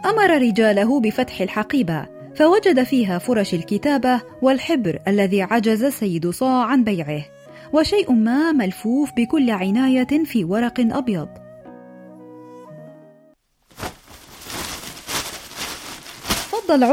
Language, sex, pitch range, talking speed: Arabic, female, 200-275 Hz, 85 wpm